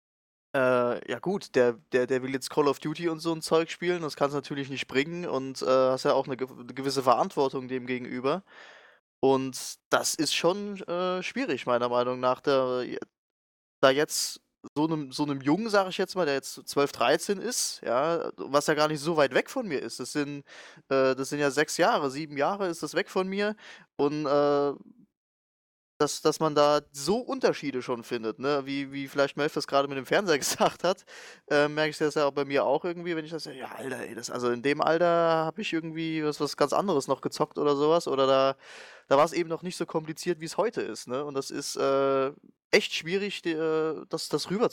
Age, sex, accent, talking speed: 20-39, male, German, 220 wpm